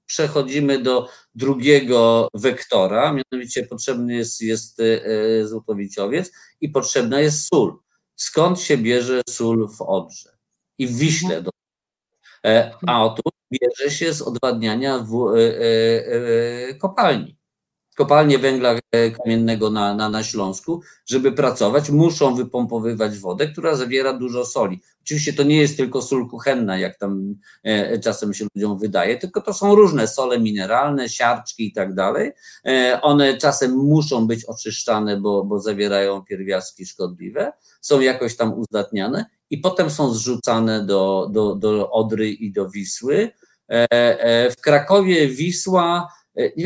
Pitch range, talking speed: 110-150 Hz, 125 wpm